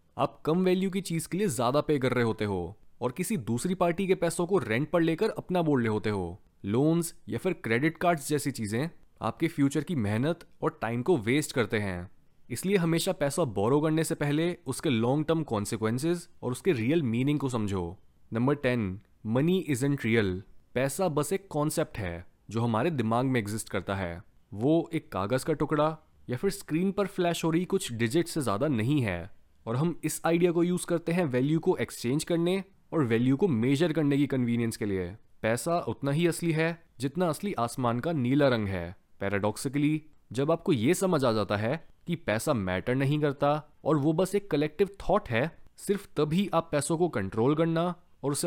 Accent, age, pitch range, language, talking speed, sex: native, 20-39, 115-170 Hz, Hindi, 195 wpm, male